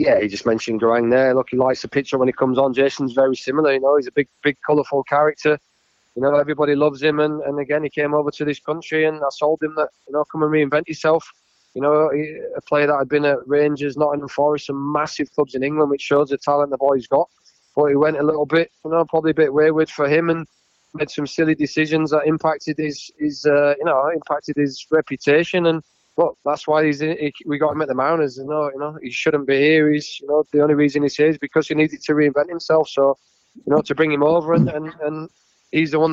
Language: English